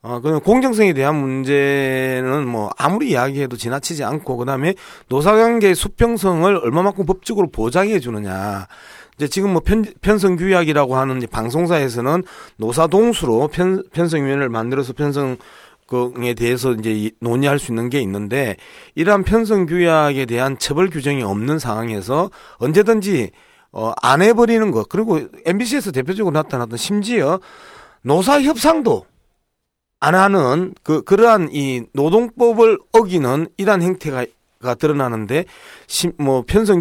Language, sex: Korean, male